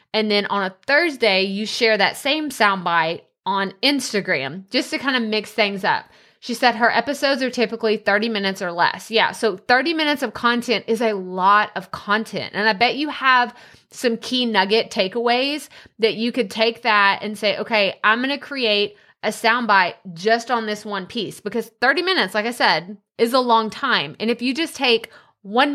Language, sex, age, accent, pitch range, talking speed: English, female, 20-39, American, 205-250 Hz, 195 wpm